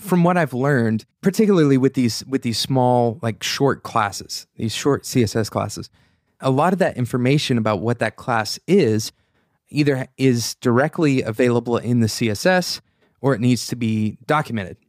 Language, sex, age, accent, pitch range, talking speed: English, male, 20-39, American, 110-145 Hz, 160 wpm